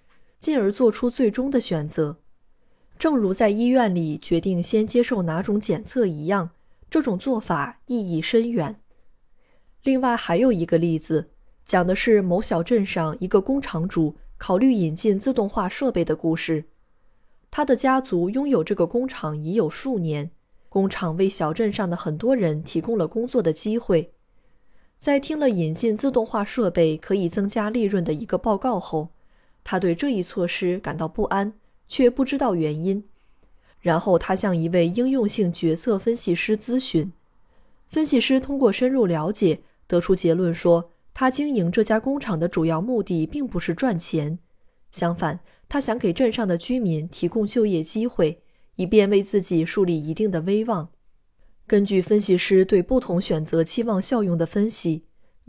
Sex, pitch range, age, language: female, 170-235 Hz, 20-39, Chinese